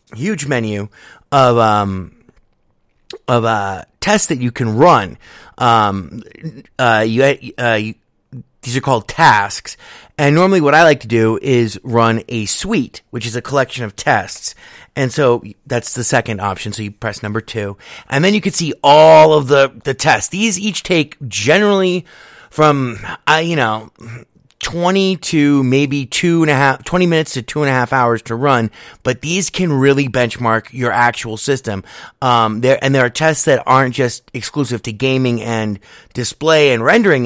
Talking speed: 175 wpm